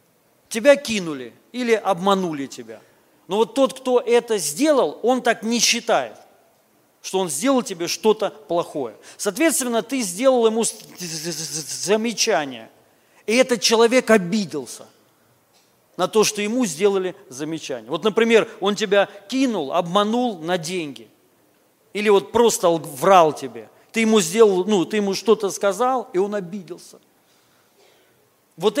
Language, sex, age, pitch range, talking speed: Russian, male, 40-59, 180-230 Hz, 125 wpm